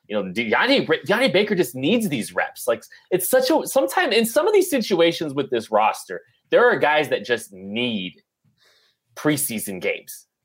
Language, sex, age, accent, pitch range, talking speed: English, male, 30-49, American, 120-170 Hz, 165 wpm